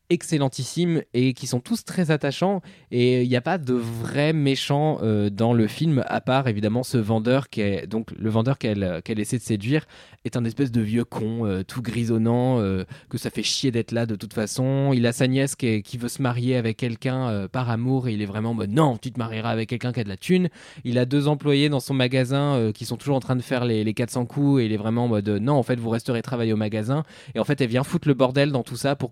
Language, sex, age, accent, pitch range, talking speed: French, male, 20-39, French, 110-135 Hz, 265 wpm